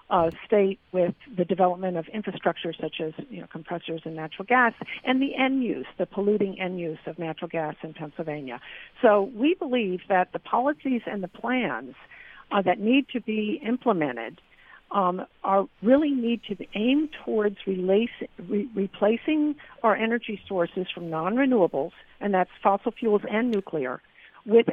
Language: English